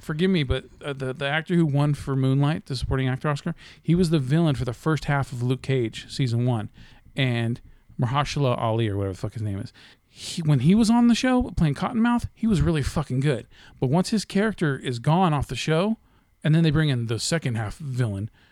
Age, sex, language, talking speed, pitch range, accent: 40-59, male, English, 225 wpm, 125-160 Hz, American